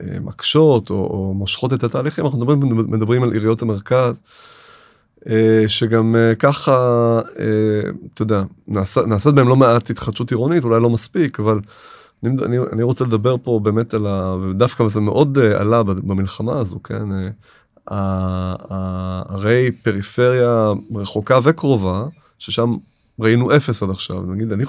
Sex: male